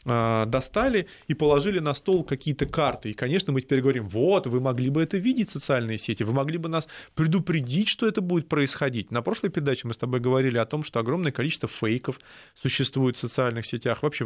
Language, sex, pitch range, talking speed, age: Russian, male, 120-160 Hz, 200 wpm, 30-49